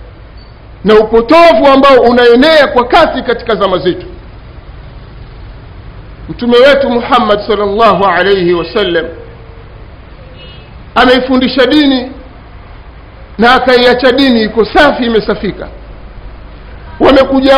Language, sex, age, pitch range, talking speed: Swahili, male, 50-69, 195-275 Hz, 80 wpm